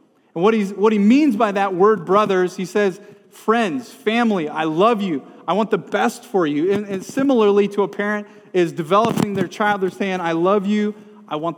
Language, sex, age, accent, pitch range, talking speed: English, male, 30-49, American, 165-205 Hz, 205 wpm